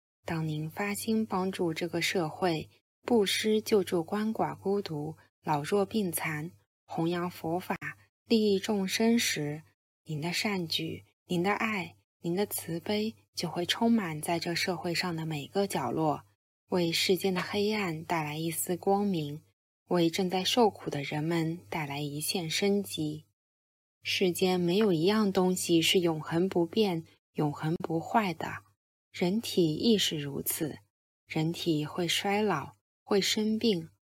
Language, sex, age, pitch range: Chinese, female, 20-39, 155-200 Hz